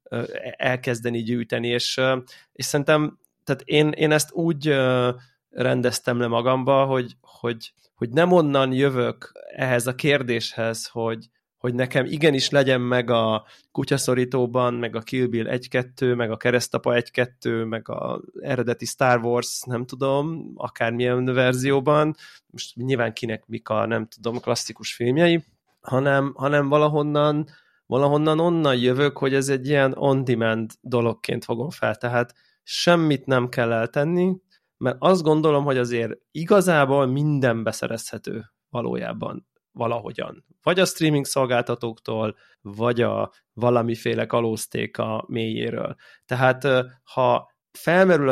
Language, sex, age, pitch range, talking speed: Hungarian, male, 20-39, 120-140 Hz, 120 wpm